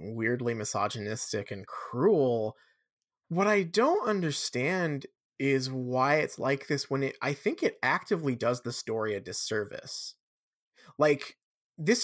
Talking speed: 130 wpm